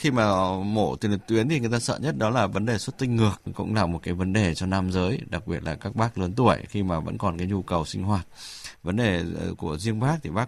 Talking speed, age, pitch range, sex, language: 280 wpm, 20-39, 95-115 Hz, male, English